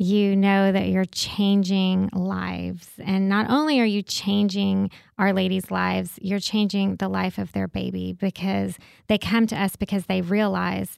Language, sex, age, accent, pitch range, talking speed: English, female, 20-39, American, 180-200 Hz, 165 wpm